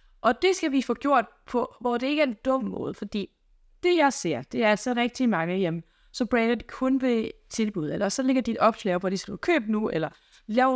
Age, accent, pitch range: 20-39, native, 205-270 Hz